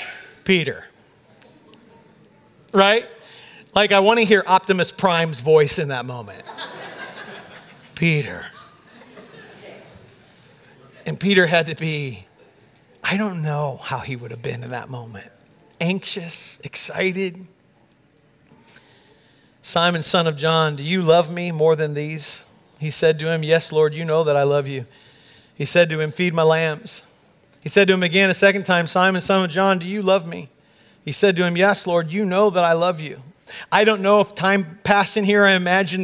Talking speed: 165 wpm